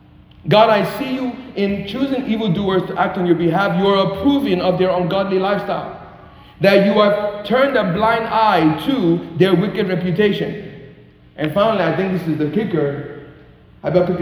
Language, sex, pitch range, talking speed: English, male, 165-205 Hz, 165 wpm